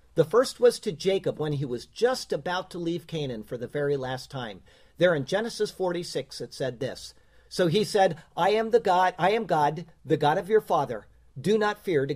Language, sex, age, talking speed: English, male, 50-69, 215 wpm